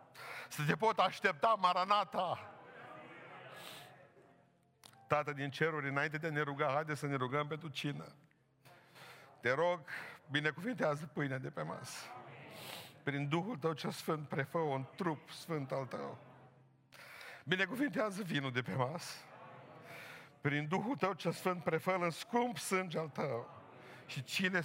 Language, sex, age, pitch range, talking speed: Romanian, male, 50-69, 145-185 Hz, 130 wpm